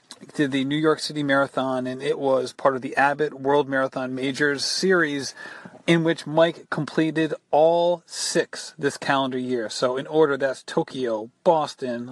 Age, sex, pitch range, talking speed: 30-49, male, 130-155 Hz, 160 wpm